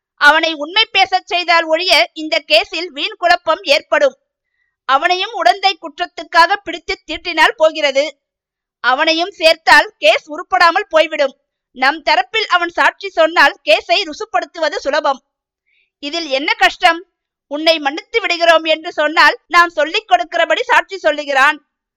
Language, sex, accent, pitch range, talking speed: Tamil, female, native, 295-350 Hz, 115 wpm